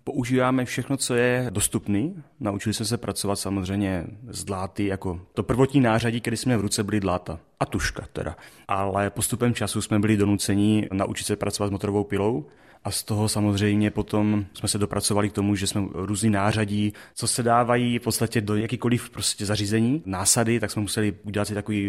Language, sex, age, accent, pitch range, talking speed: Czech, male, 30-49, native, 100-115 Hz, 185 wpm